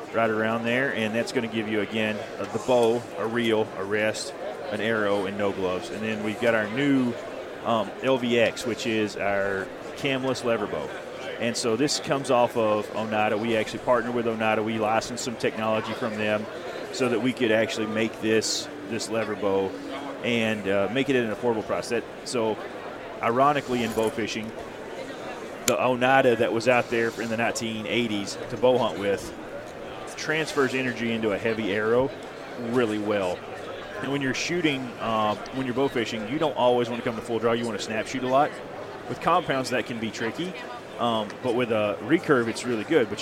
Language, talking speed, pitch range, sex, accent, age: English, 190 wpm, 110-125 Hz, male, American, 30-49